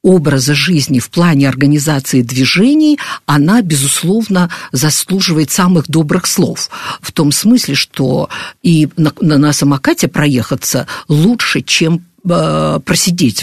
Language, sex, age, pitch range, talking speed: Russian, female, 50-69, 150-195 Hz, 115 wpm